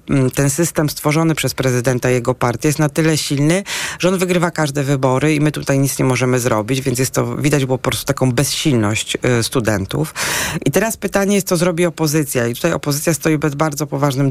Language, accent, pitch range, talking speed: Polish, native, 125-150 Hz, 200 wpm